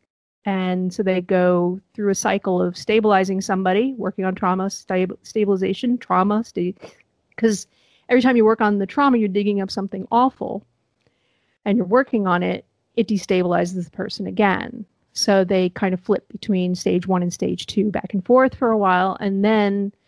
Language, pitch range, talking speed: English, 185-210 Hz, 170 wpm